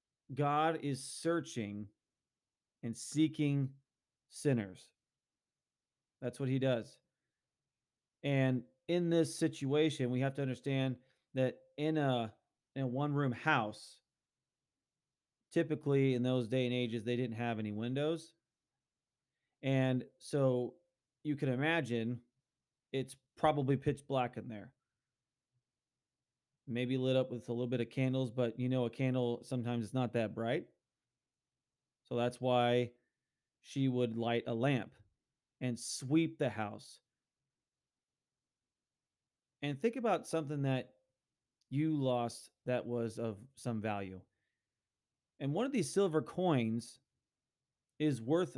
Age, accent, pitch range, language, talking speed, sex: 30-49, American, 120-145 Hz, English, 120 wpm, male